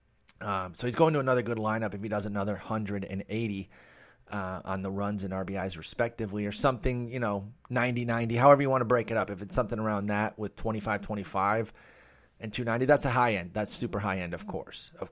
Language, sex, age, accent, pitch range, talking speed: English, male, 30-49, American, 100-120 Hz, 205 wpm